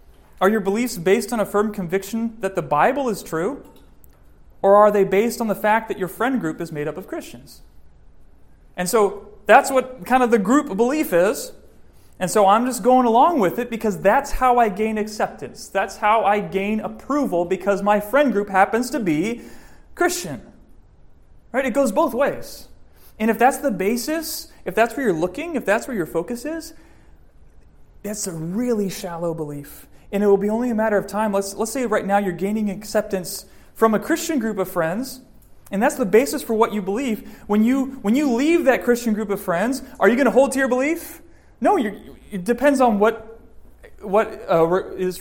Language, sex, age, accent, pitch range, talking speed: English, male, 30-49, American, 185-240 Hz, 200 wpm